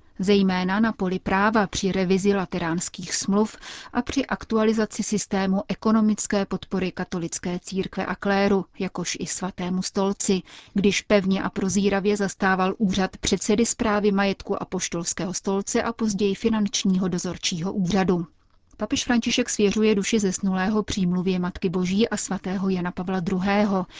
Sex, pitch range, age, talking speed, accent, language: female, 185-210 Hz, 30-49, 130 wpm, native, Czech